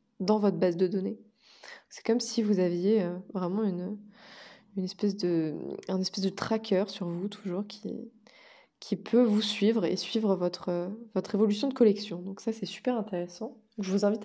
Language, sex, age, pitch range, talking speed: French, female, 20-39, 185-220 Hz, 175 wpm